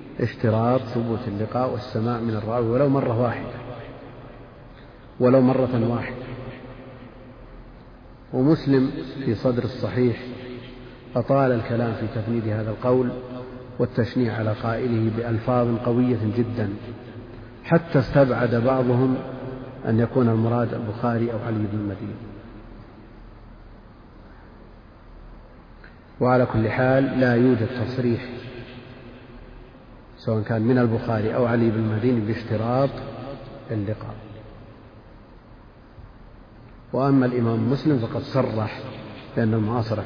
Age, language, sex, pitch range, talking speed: 50-69, Arabic, male, 110-125 Hz, 95 wpm